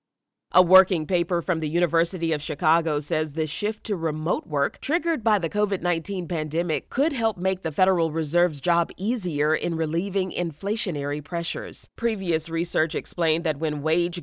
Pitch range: 155-195 Hz